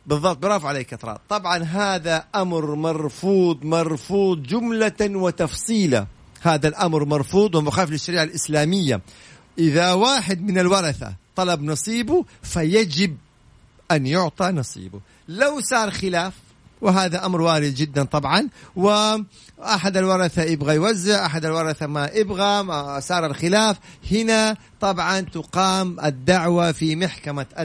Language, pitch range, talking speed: Arabic, 145-185 Hz, 110 wpm